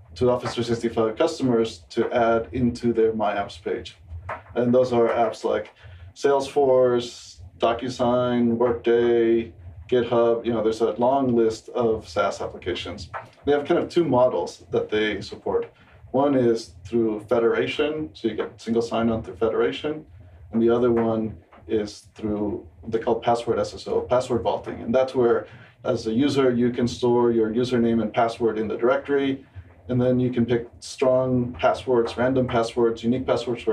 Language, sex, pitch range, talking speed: English, male, 110-125 Hz, 160 wpm